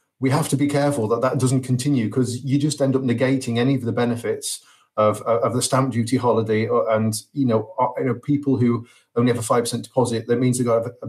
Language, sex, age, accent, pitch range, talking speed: English, male, 30-49, British, 115-130 Hz, 215 wpm